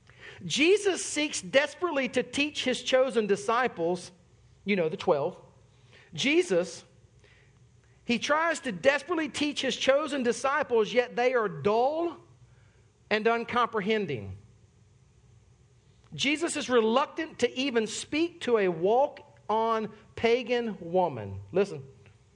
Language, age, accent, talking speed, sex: English, 50-69, American, 105 wpm, male